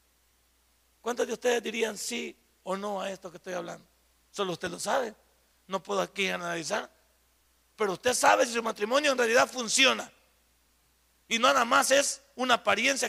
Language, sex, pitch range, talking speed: Spanish, male, 175-250 Hz, 165 wpm